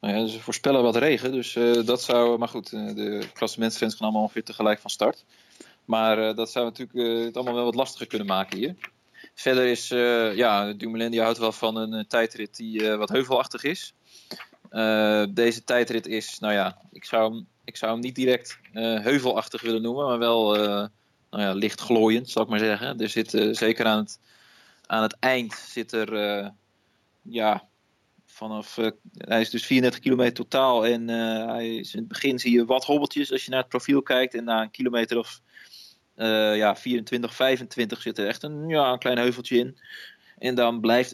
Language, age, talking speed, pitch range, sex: Dutch, 20-39, 190 wpm, 110-125 Hz, male